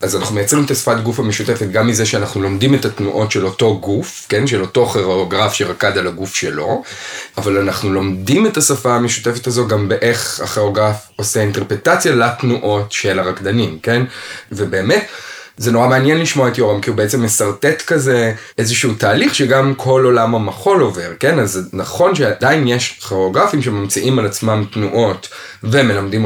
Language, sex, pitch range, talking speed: Hebrew, male, 100-125 Hz, 160 wpm